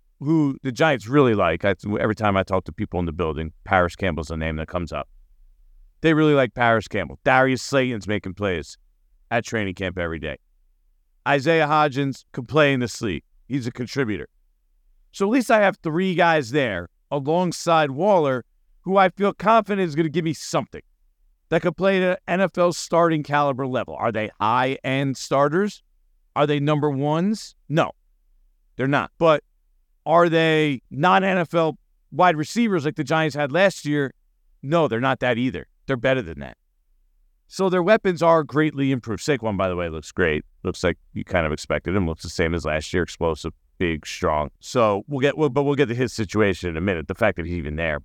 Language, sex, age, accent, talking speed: English, male, 50-69, American, 190 wpm